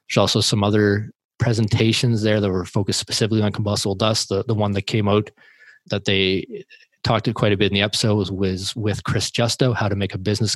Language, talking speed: English, 220 wpm